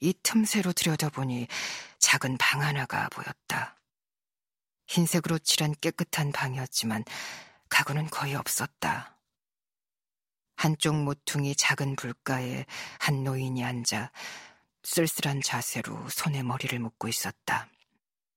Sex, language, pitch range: female, Korean, 135-165 Hz